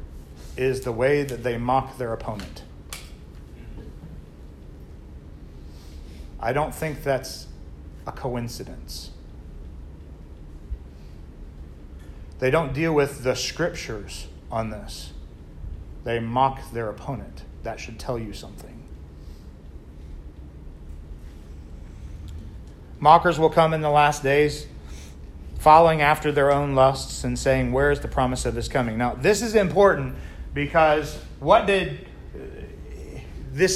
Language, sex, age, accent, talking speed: English, male, 40-59, American, 105 wpm